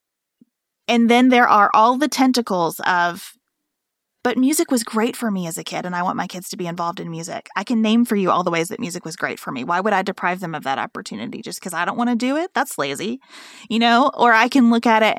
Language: English